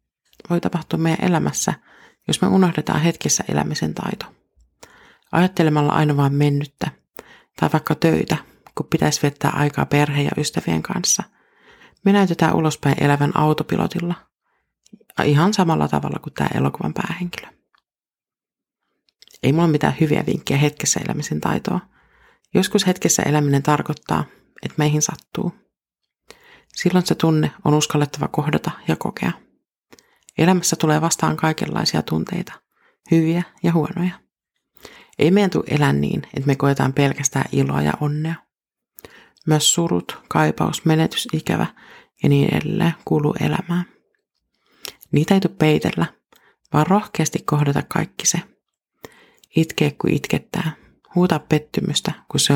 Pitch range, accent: 145-175 Hz, native